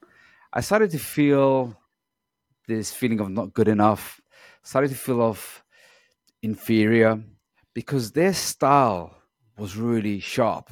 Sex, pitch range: male, 105-150 Hz